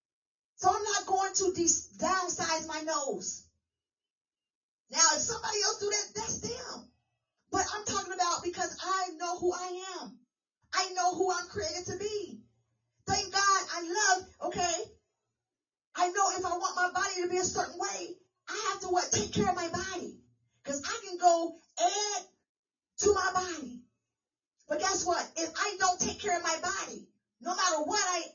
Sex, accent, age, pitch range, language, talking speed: female, American, 30-49, 340-395 Hz, English, 175 wpm